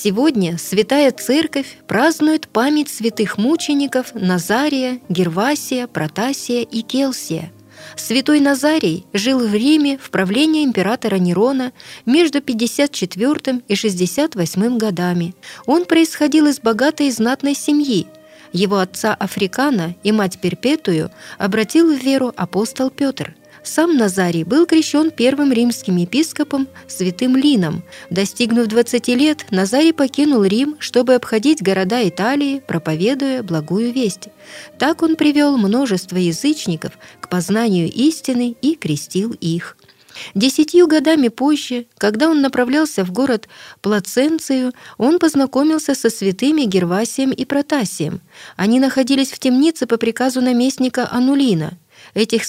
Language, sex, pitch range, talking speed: Russian, female, 200-280 Hz, 115 wpm